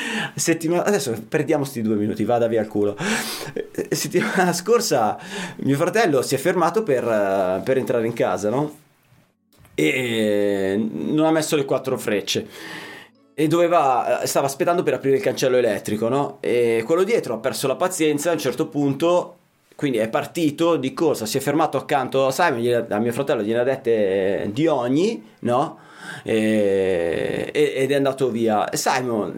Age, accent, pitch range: 30-49, native, 120-185 Hz